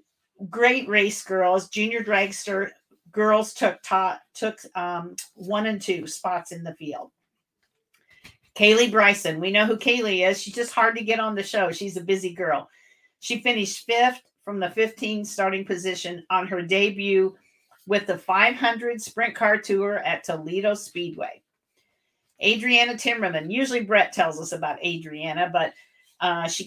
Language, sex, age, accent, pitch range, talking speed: English, female, 50-69, American, 180-220 Hz, 150 wpm